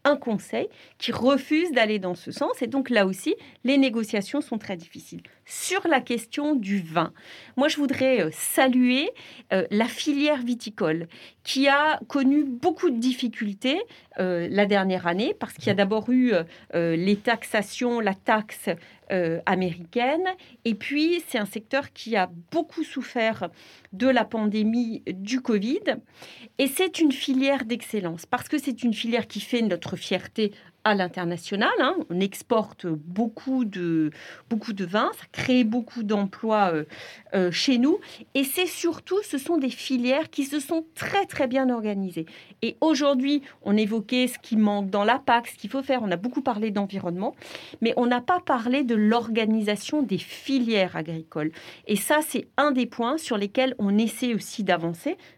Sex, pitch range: female, 200-275 Hz